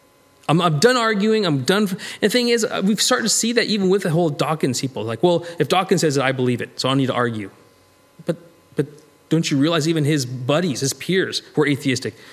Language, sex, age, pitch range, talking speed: English, male, 30-49, 125-185 Hz, 235 wpm